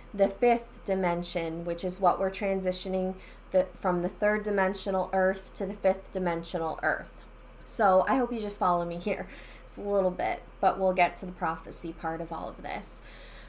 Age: 20-39